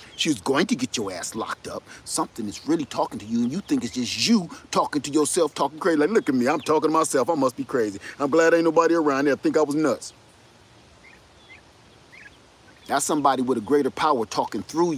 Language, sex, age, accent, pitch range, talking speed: English, male, 40-59, American, 155-230 Hz, 230 wpm